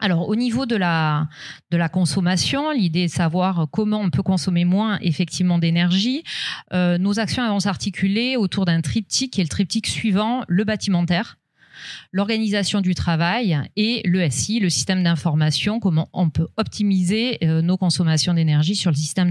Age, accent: 40-59, French